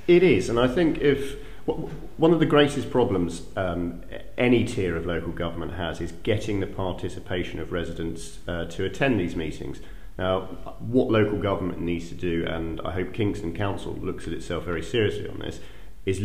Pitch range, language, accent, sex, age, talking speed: 85-110 Hz, English, British, male, 40-59, 180 wpm